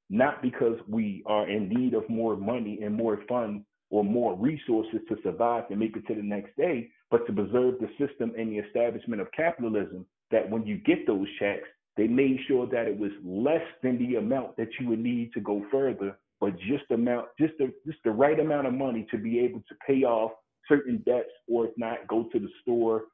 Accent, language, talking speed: American, English, 220 wpm